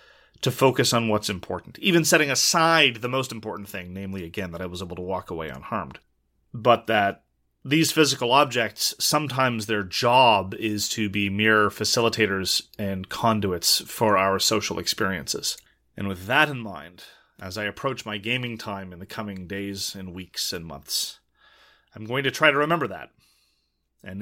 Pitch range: 100-135 Hz